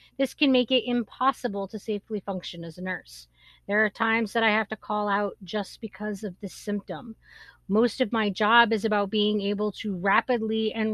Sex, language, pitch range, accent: female, English, 200-245 Hz, American